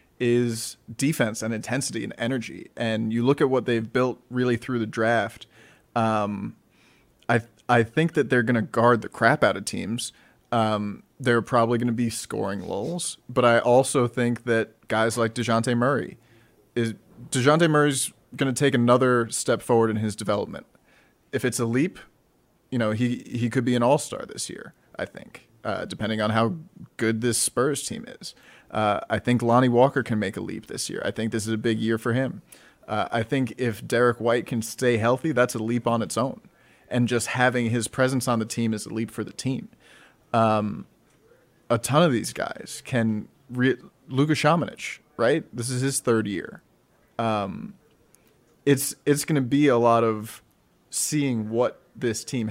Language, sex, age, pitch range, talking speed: English, male, 30-49, 115-130 Hz, 185 wpm